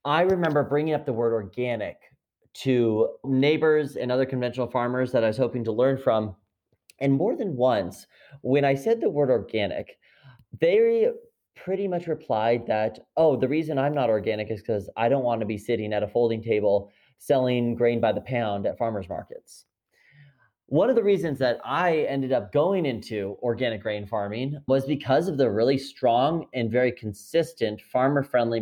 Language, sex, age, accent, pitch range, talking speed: English, male, 30-49, American, 115-145 Hz, 175 wpm